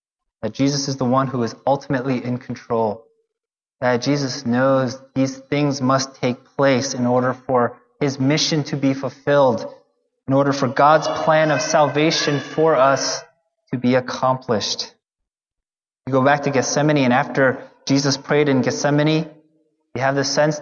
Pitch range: 125-155 Hz